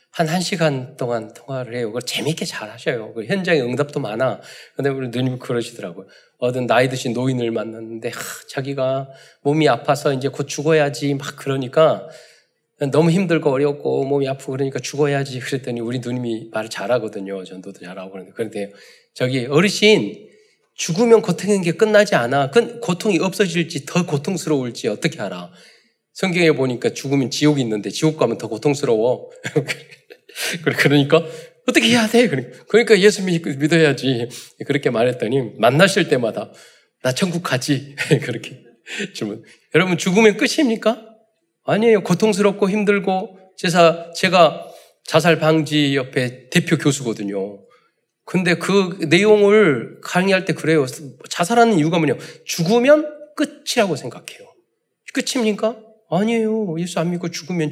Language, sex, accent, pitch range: Korean, male, native, 130-195 Hz